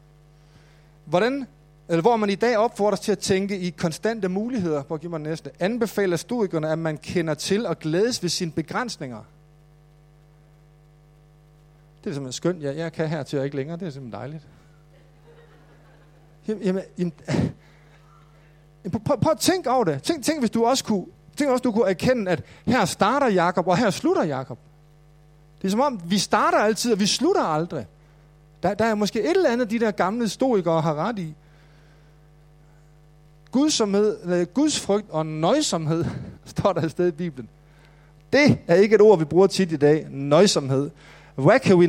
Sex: male